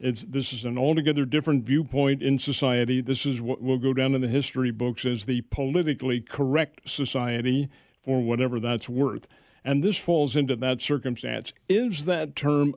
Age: 50-69